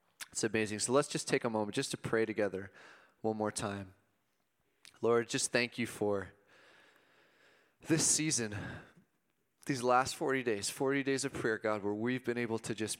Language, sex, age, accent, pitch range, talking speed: English, male, 30-49, American, 110-130 Hz, 170 wpm